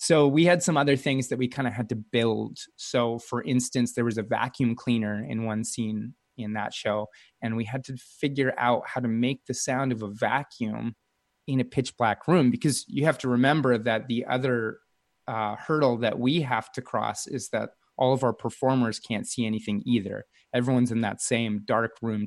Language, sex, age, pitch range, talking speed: English, male, 20-39, 115-130 Hz, 205 wpm